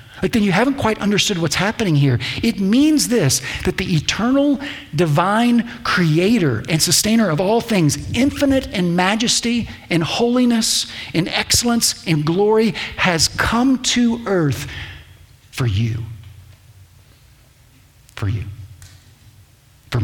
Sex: male